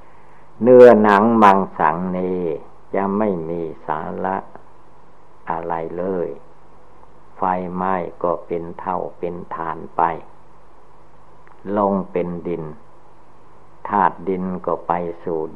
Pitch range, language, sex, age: 85-100 Hz, Thai, male, 60-79